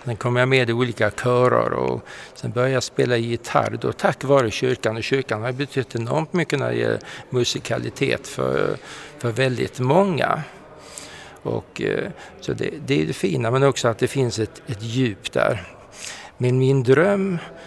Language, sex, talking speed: Swedish, male, 170 wpm